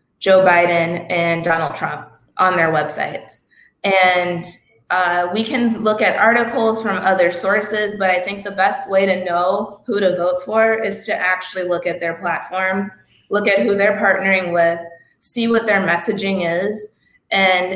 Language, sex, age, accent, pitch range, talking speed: English, female, 20-39, American, 180-205 Hz, 165 wpm